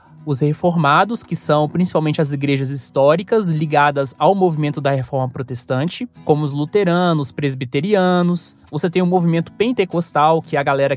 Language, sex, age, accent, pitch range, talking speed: Portuguese, male, 20-39, Brazilian, 145-190 Hz, 160 wpm